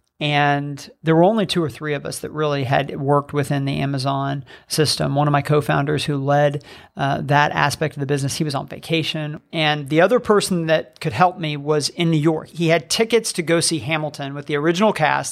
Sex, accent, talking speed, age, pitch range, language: male, American, 220 wpm, 40-59, 140-160 Hz, English